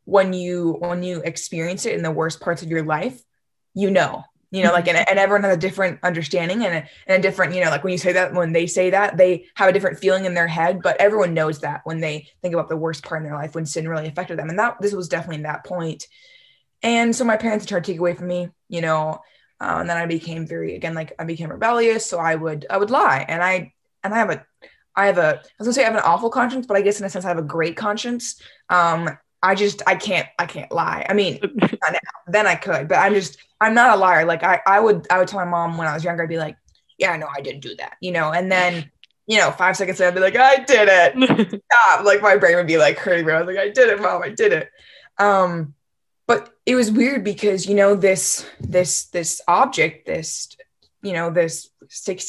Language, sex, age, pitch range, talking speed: English, female, 20-39, 165-200 Hz, 260 wpm